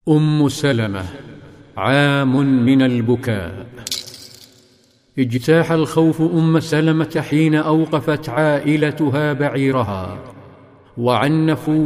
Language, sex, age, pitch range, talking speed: Arabic, male, 50-69, 130-155 Hz, 70 wpm